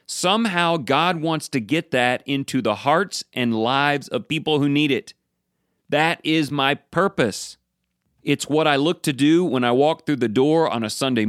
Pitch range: 120-160 Hz